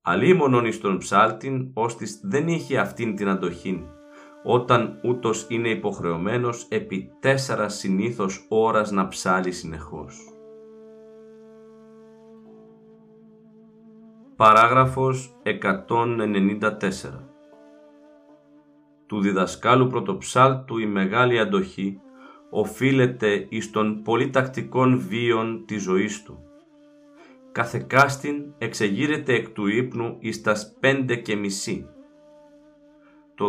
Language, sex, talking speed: Greek, male, 80 wpm